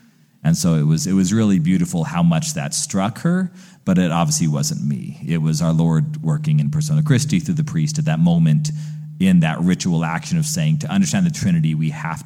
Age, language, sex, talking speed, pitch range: 30-49, English, male, 215 wpm, 135-170 Hz